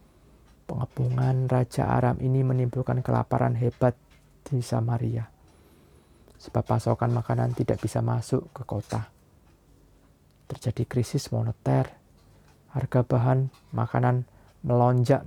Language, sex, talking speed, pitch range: Indonesian, male, 95 wpm, 115-135 Hz